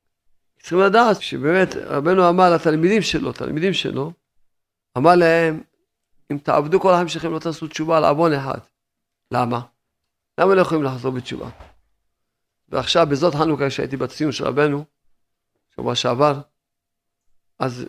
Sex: male